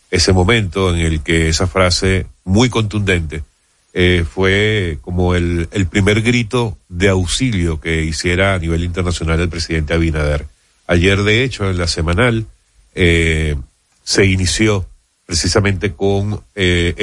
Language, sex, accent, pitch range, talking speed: Spanish, male, Argentinian, 85-100 Hz, 135 wpm